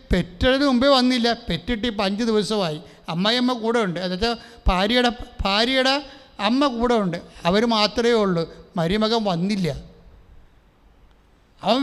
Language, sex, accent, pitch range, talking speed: English, male, Indian, 190-235 Hz, 70 wpm